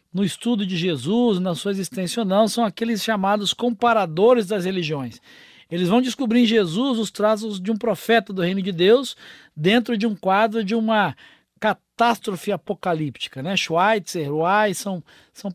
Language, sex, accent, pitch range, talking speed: Portuguese, male, Brazilian, 180-225 Hz, 160 wpm